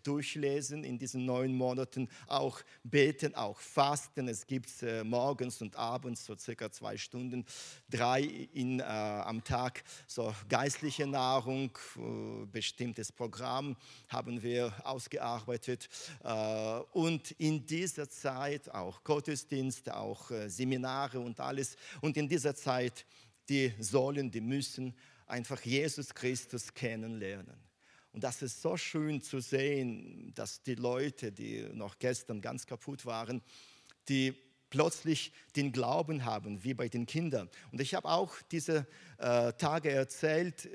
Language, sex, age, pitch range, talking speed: German, male, 40-59, 120-155 Hz, 130 wpm